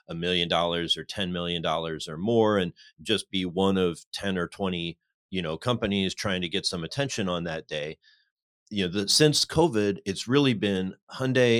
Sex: male